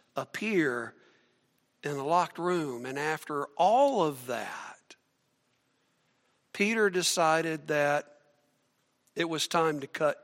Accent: American